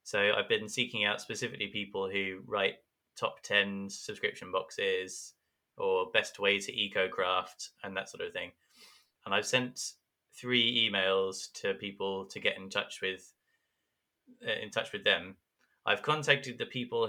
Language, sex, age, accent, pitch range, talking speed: English, male, 20-39, British, 100-140 Hz, 160 wpm